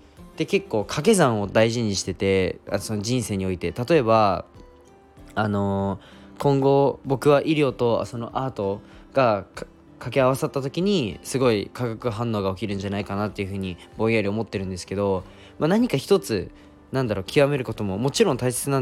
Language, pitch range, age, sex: Japanese, 100-140 Hz, 20-39, male